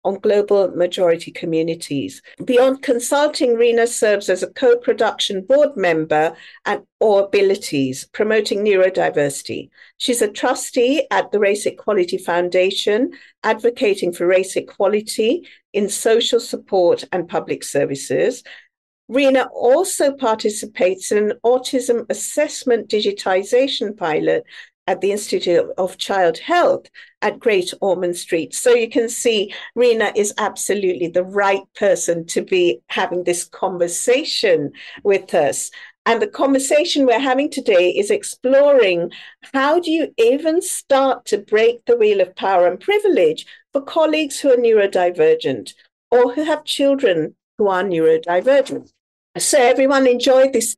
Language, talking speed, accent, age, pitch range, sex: English, 130 wpm, British, 50-69, 190-280 Hz, female